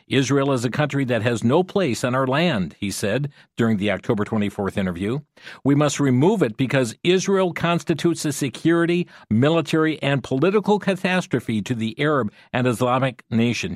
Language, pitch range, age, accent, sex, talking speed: English, 110-155 Hz, 50-69, American, male, 160 wpm